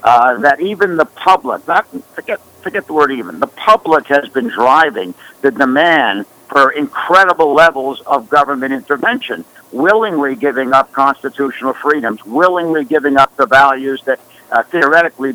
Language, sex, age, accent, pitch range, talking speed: English, male, 60-79, American, 135-165 Hz, 145 wpm